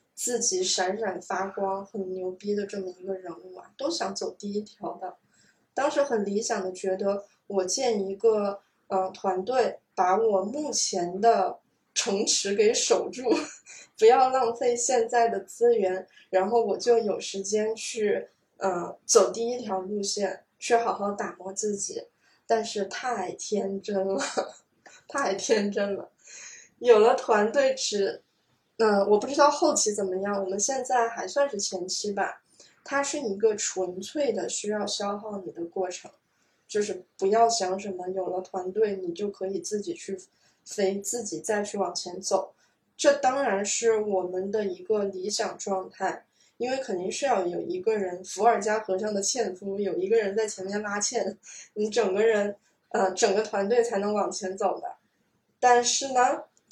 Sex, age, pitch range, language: female, 20-39, 190-235 Hz, Chinese